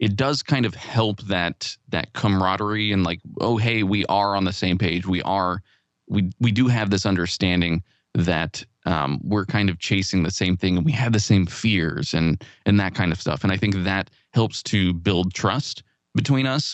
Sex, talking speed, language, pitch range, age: male, 205 wpm, English, 95-115 Hz, 20-39